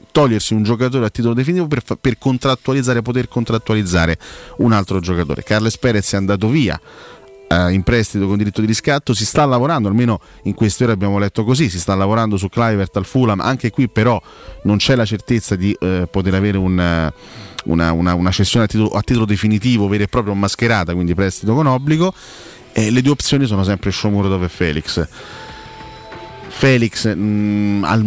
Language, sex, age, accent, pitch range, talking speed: Italian, male, 30-49, native, 95-120 Hz, 170 wpm